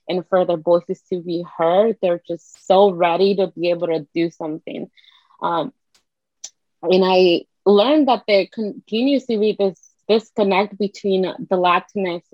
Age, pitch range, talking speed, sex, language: 20-39, 175-205 Hz, 150 wpm, female, English